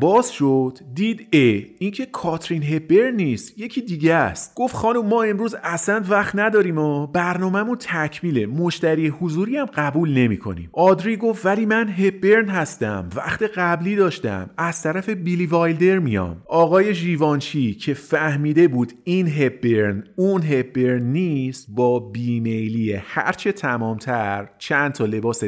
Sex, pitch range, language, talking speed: male, 115-175 Hz, Persian, 130 wpm